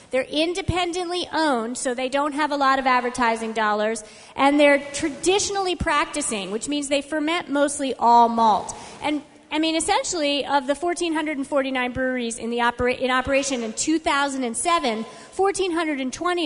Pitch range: 240-300 Hz